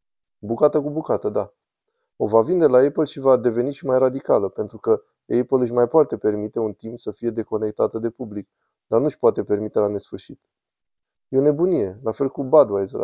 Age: 20-39